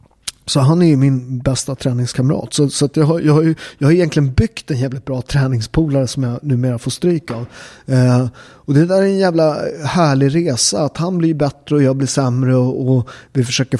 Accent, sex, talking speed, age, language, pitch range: native, male, 215 wpm, 30-49, Swedish, 125-155 Hz